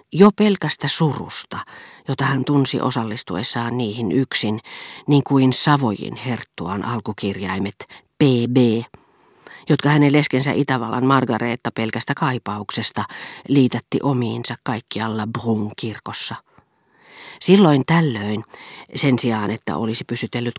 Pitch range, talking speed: 120-145 Hz, 95 wpm